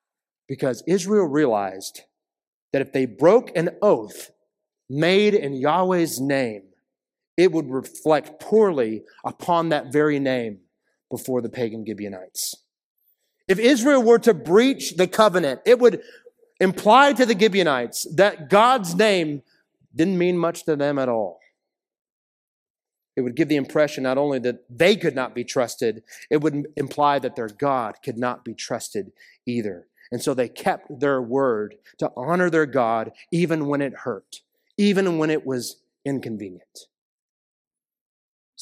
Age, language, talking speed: 30-49, English, 145 wpm